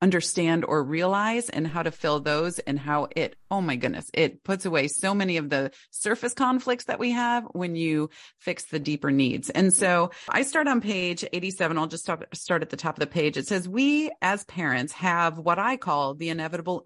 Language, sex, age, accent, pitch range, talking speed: English, female, 30-49, American, 155-200 Hz, 210 wpm